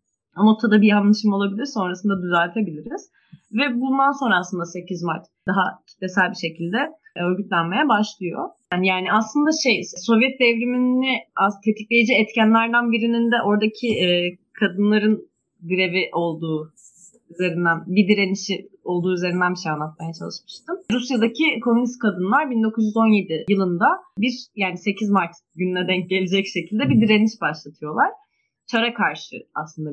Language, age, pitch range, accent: Turkish, 30-49, 180-240 Hz, native